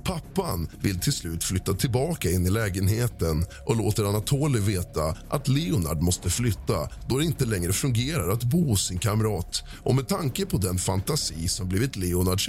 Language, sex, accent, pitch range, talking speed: Swedish, male, native, 90-130 Hz, 170 wpm